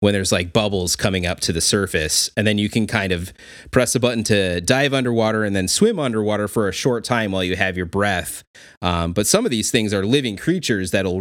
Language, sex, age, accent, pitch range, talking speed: English, male, 30-49, American, 85-110 Hz, 235 wpm